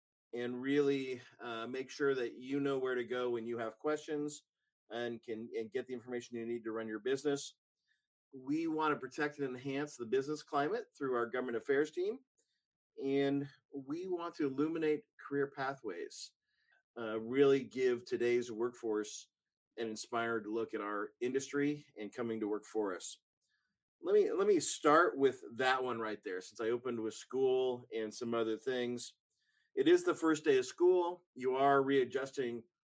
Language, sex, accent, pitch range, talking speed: English, male, American, 120-150 Hz, 170 wpm